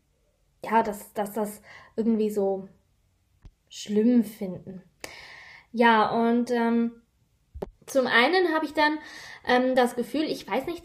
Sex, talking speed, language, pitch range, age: female, 120 wpm, German, 210-255 Hz, 20-39